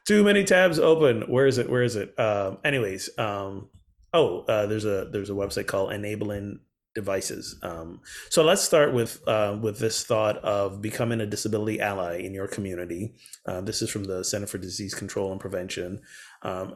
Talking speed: 185 wpm